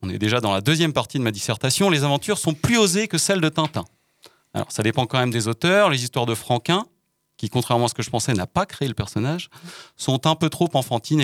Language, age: French, 30-49